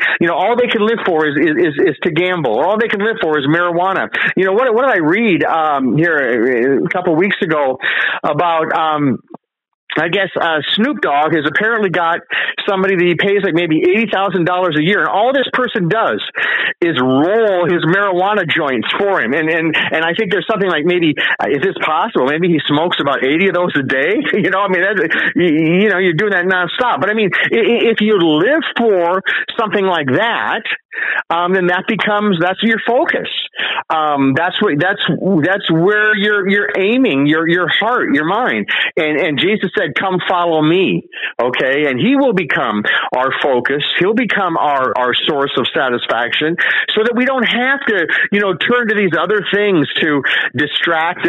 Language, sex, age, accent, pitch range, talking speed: English, male, 40-59, American, 165-215 Hz, 195 wpm